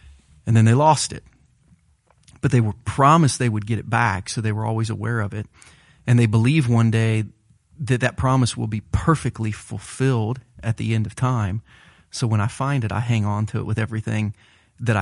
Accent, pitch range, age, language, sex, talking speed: American, 110-125 Hz, 30-49, English, male, 205 wpm